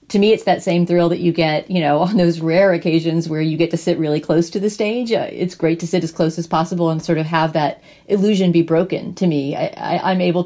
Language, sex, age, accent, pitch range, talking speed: English, female, 40-59, American, 160-185 Hz, 265 wpm